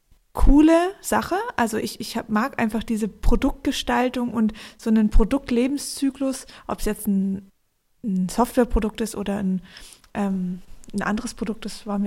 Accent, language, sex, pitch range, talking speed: German, German, female, 220-255 Hz, 140 wpm